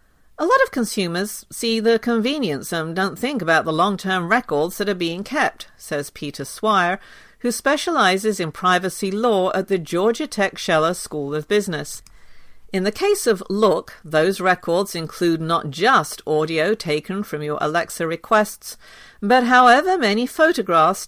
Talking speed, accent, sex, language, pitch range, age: 155 wpm, British, female, English, 165-225 Hz, 50-69